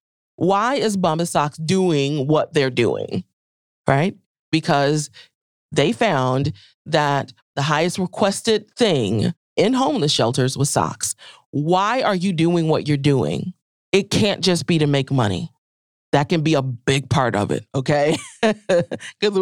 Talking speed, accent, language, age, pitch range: 140 wpm, American, English, 30-49, 150-205 Hz